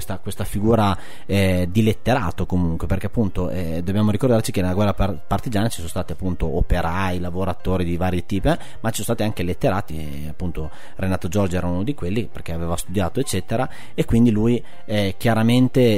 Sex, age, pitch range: male, 30-49, 85-105 Hz